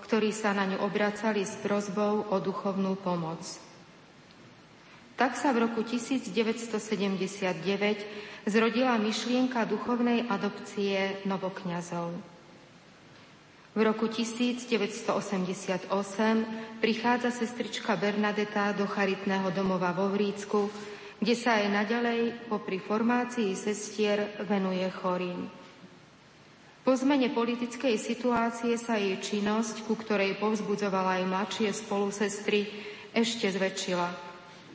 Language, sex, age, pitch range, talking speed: Slovak, female, 40-59, 195-225 Hz, 95 wpm